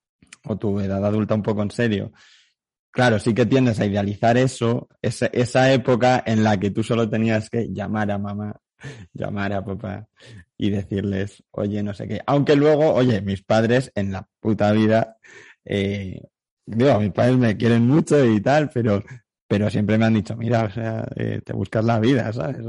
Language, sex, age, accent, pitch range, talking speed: Spanish, male, 20-39, Spanish, 105-120 Hz, 185 wpm